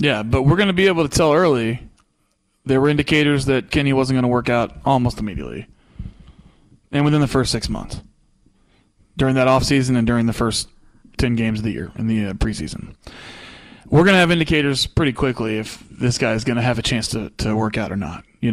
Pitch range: 110-130 Hz